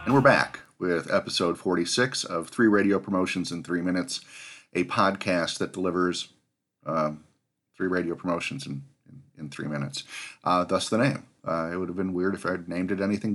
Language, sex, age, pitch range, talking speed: English, male, 40-59, 90-110 Hz, 190 wpm